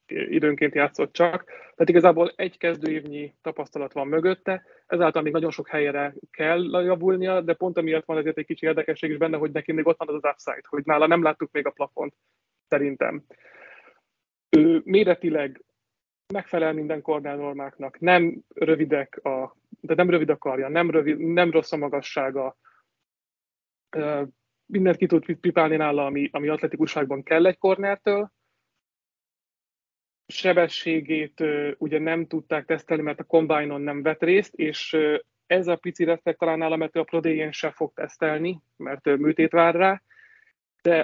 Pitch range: 145-170 Hz